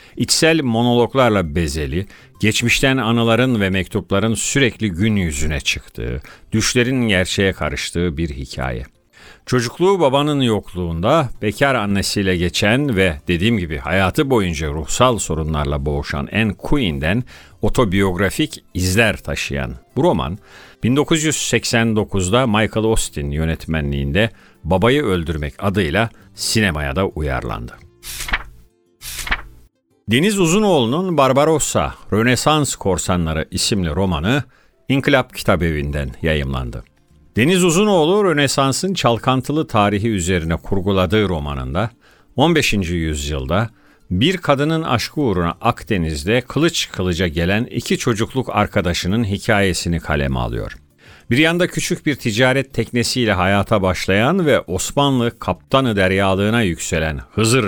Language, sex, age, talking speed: Turkish, male, 50-69, 100 wpm